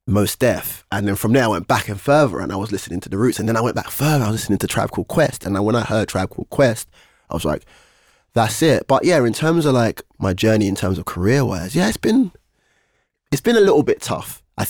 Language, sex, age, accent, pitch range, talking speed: English, male, 20-39, British, 95-115 Hz, 270 wpm